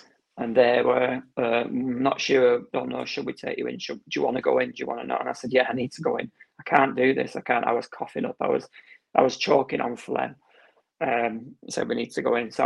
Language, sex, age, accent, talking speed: English, male, 30-49, British, 280 wpm